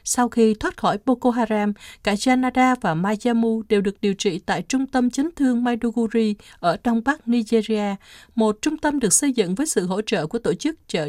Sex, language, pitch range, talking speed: female, Vietnamese, 205-265 Hz, 205 wpm